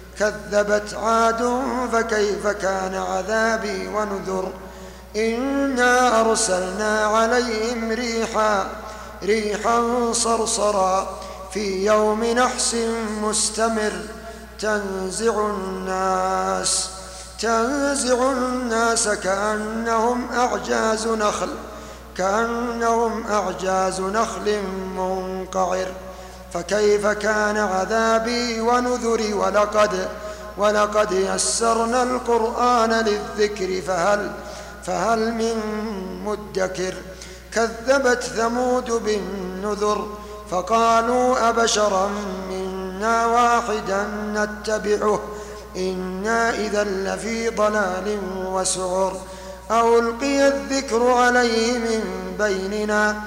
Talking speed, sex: 65 wpm, male